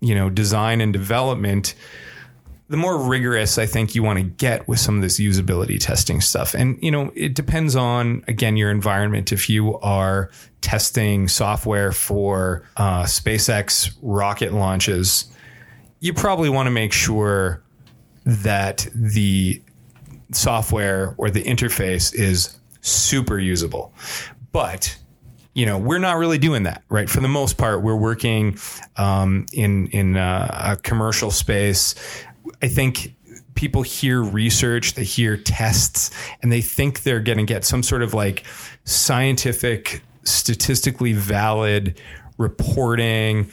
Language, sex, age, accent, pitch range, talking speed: English, male, 30-49, American, 100-125 Hz, 140 wpm